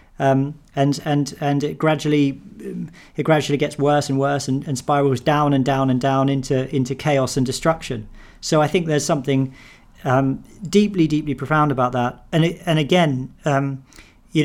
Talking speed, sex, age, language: 175 wpm, male, 40-59, English